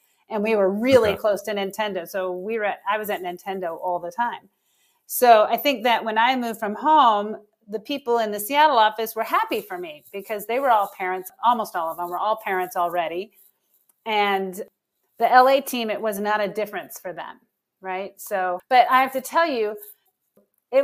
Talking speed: 200 wpm